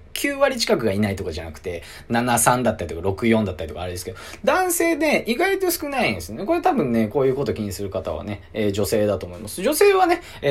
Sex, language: male, Japanese